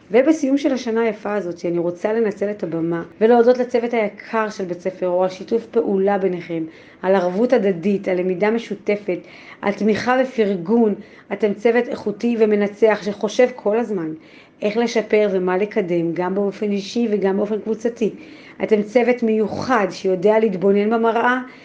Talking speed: 145 wpm